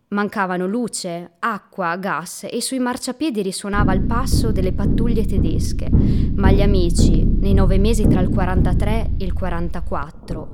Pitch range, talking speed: 160-230 Hz, 140 wpm